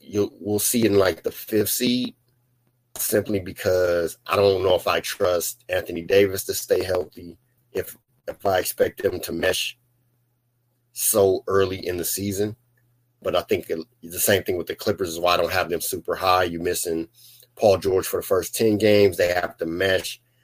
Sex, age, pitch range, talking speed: male, 30-49, 100-125 Hz, 190 wpm